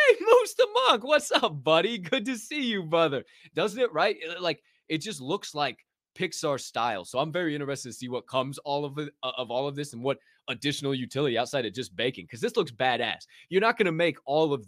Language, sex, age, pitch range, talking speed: English, male, 20-39, 145-195 Hz, 215 wpm